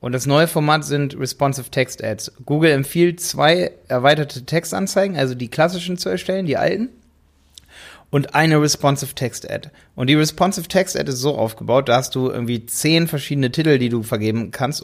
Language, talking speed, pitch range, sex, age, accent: German, 155 wpm, 125-155 Hz, male, 30-49, German